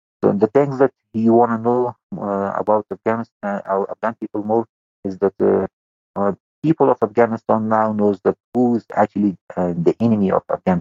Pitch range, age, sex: 90-110 Hz, 50-69, male